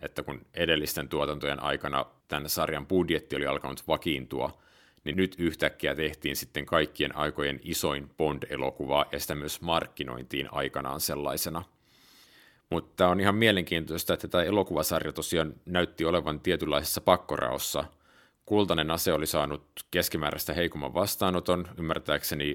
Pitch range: 75-90 Hz